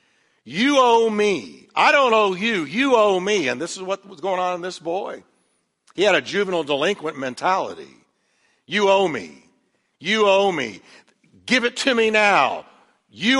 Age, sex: 60-79, male